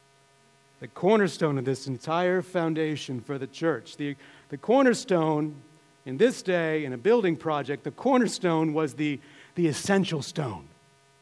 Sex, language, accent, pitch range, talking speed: male, English, American, 160-220 Hz, 140 wpm